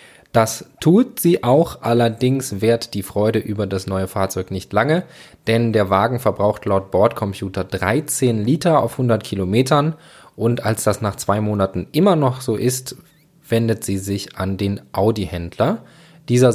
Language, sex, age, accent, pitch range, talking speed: German, male, 20-39, German, 100-125 Hz, 150 wpm